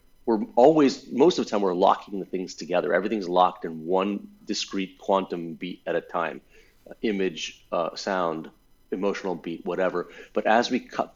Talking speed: 170 wpm